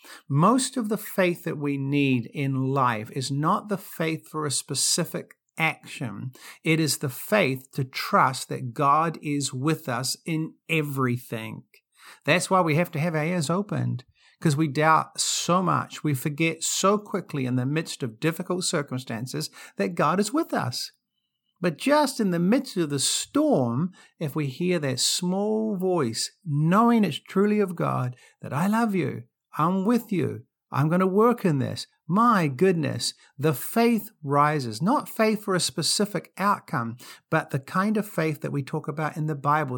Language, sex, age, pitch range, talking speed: English, male, 50-69, 130-180 Hz, 170 wpm